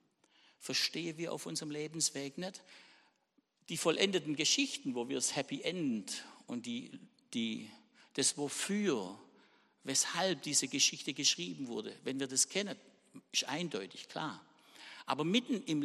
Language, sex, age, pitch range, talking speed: German, male, 60-79, 140-185 Hz, 130 wpm